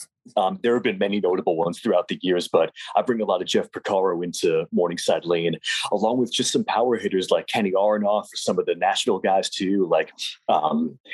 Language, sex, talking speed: English, male, 210 wpm